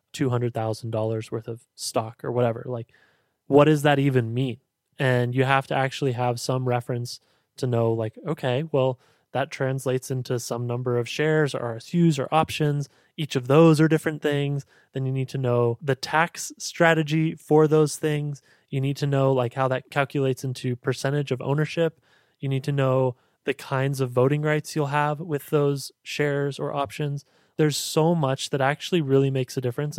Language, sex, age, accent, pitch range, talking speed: English, male, 20-39, American, 125-145 Hz, 180 wpm